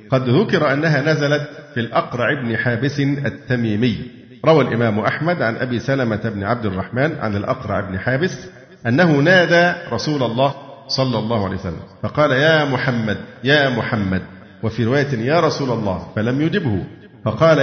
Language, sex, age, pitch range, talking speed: Arabic, male, 50-69, 115-150 Hz, 145 wpm